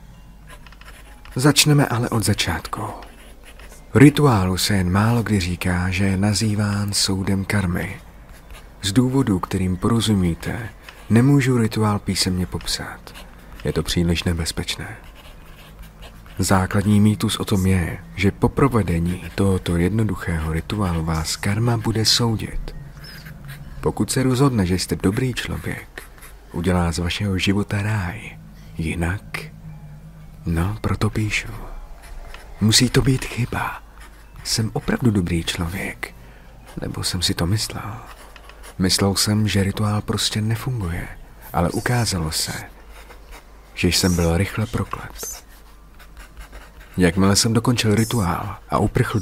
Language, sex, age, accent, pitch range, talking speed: Czech, male, 40-59, native, 90-115 Hz, 110 wpm